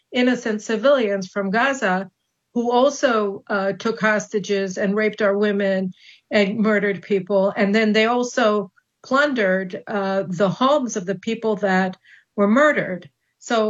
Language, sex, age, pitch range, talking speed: English, female, 50-69, 195-230 Hz, 135 wpm